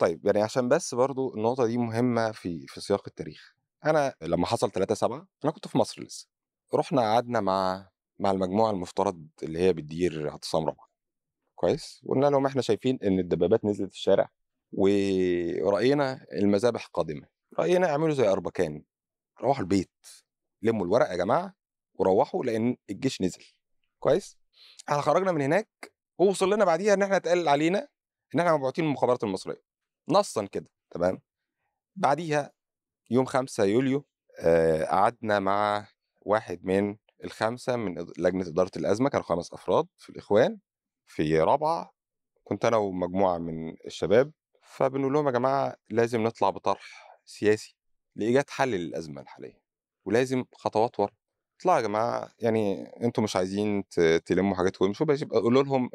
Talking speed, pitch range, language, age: 140 wpm, 95-135 Hz, Arabic, 30-49